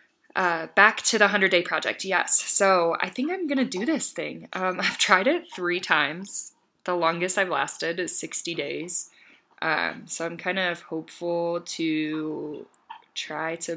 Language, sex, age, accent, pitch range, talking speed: English, female, 20-39, American, 165-185 Hz, 170 wpm